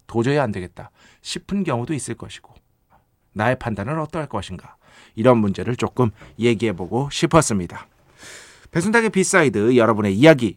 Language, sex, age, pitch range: Korean, male, 40-59, 100-145 Hz